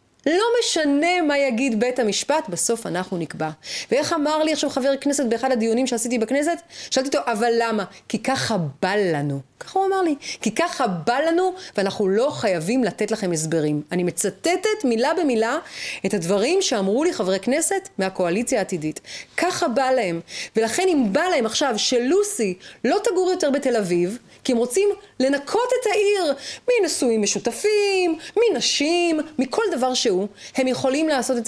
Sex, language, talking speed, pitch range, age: female, Hebrew, 160 wpm, 220-345 Hz, 30-49